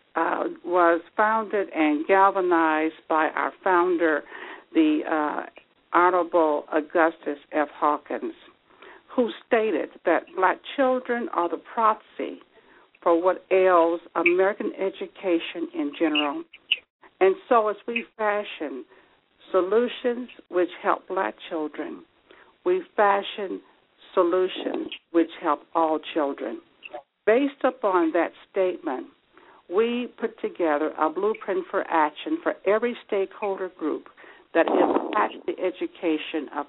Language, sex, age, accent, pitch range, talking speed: English, female, 60-79, American, 165-245 Hz, 110 wpm